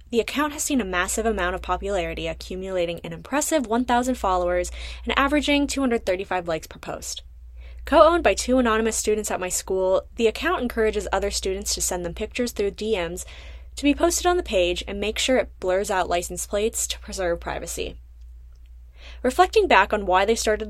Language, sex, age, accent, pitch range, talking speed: English, female, 10-29, American, 175-230 Hz, 180 wpm